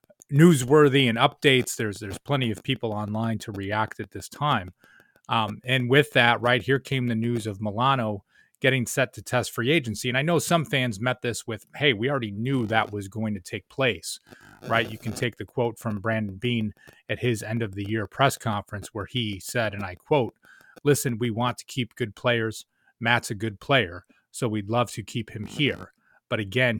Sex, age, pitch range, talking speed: male, 30-49, 105-130 Hz, 205 wpm